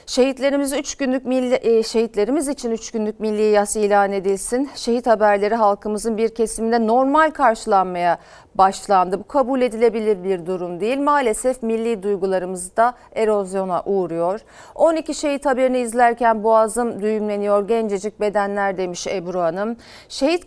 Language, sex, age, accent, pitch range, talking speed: Turkish, female, 40-59, native, 200-255 Hz, 130 wpm